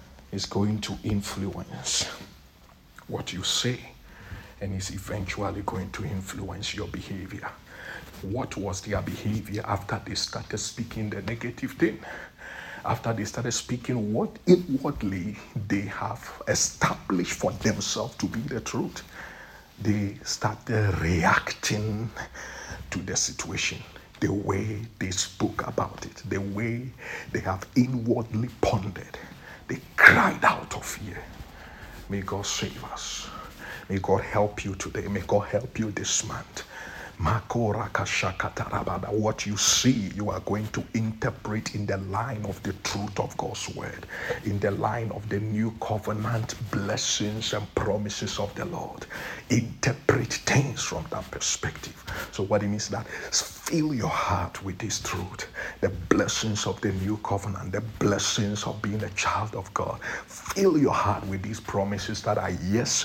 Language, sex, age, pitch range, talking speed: English, male, 50-69, 100-115 Hz, 140 wpm